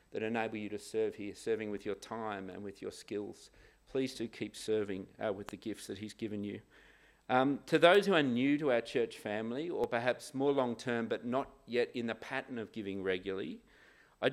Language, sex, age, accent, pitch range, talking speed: English, male, 40-59, Australian, 105-140 Hz, 210 wpm